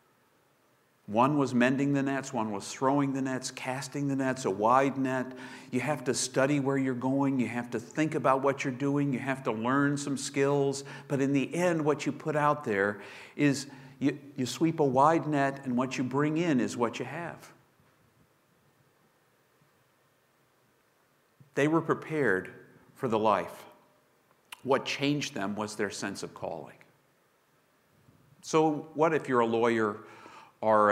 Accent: American